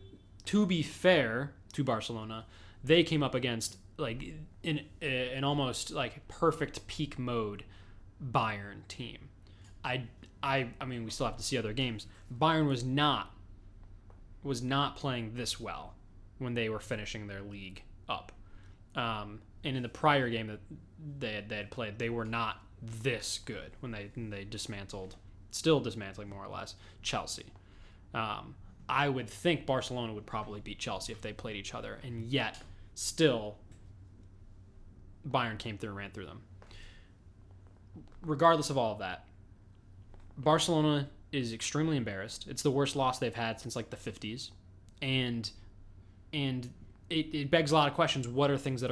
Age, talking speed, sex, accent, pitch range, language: 20-39, 160 wpm, male, American, 100-130 Hz, English